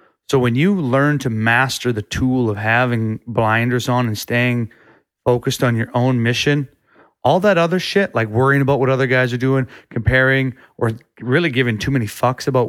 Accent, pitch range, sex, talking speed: American, 120-140 Hz, male, 185 wpm